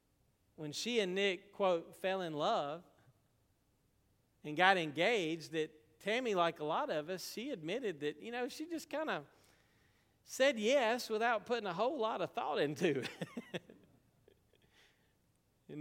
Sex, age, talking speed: male, 40-59, 145 wpm